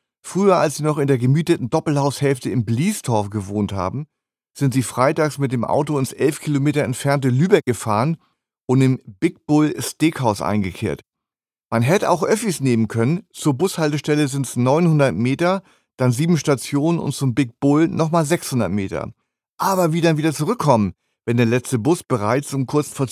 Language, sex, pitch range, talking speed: German, male, 130-160 Hz, 170 wpm